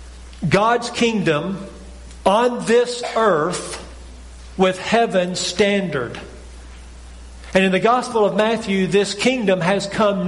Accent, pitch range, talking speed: American, 165-210 Hz, 105 wpm